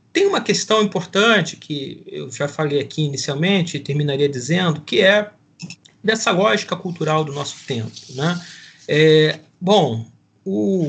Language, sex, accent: Portuguese, male, Brazilian